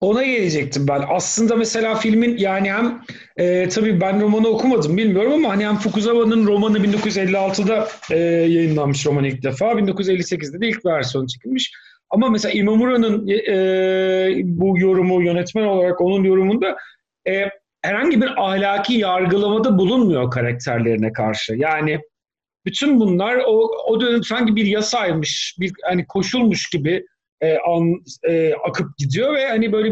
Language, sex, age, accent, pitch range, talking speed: Turkish, male, 40-59, native, 175-220 Hz, 140 wpm